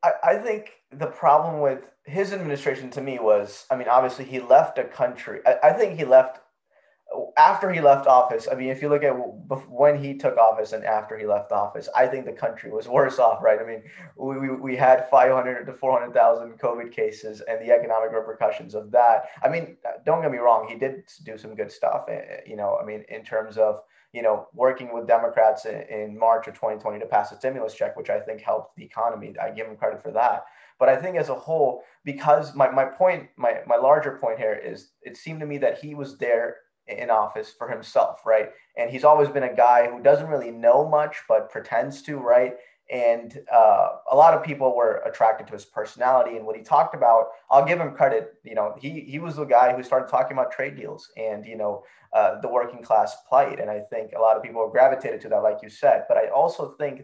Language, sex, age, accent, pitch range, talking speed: English, male, 20-39, American, 115-150 Hz, 225 wpm